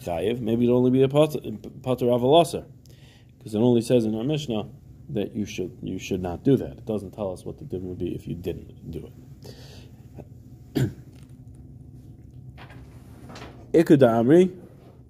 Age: 20-39